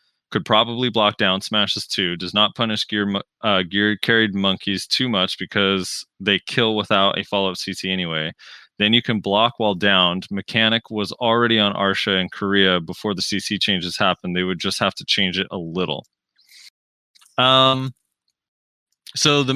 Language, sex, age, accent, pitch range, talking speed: English, male, 20-39, American, 95-110 Hz, 165 wpm